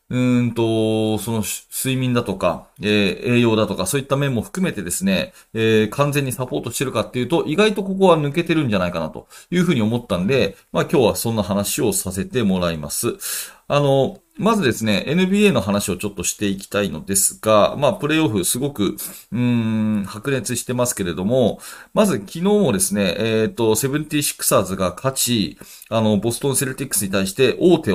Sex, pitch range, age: male, 105-150 Hz, 40-59